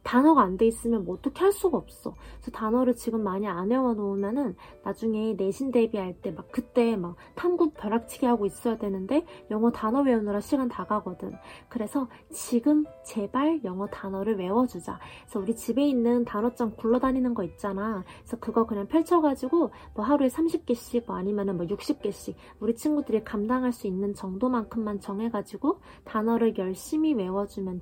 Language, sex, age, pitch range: Korean, female, 20-39, 210-275 Hz